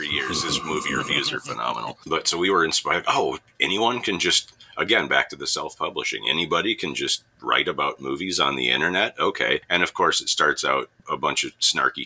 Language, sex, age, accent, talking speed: English, male, 40-59, American, 205 wpm